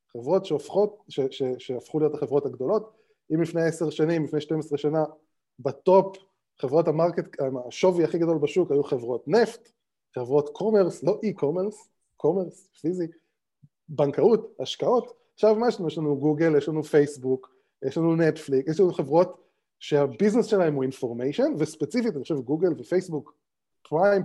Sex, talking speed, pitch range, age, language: male, 135 wpm, 150-210 Hz, 20-39, Hebrew